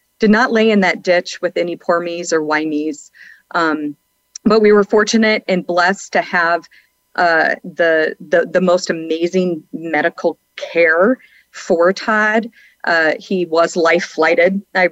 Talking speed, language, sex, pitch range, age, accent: 155 wpm, English, female, 165-195 Hz, 40-59, American